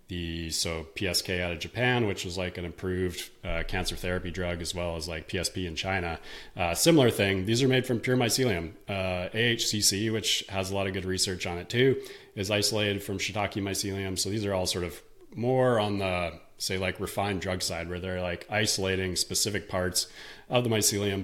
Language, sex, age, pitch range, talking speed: English, male, 30-49, 90-105 Hz, 200 wpm